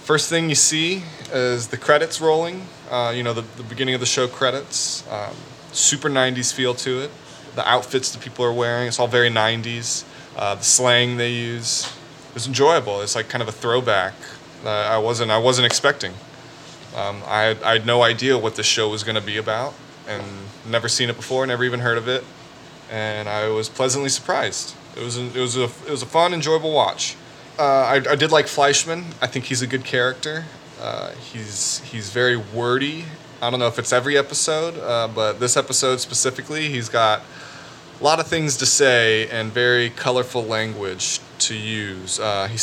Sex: male